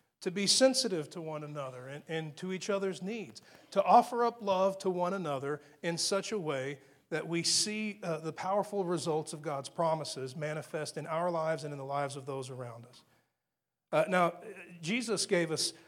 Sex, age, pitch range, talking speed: male, 40-59, 155-190 Hz, 190 wpm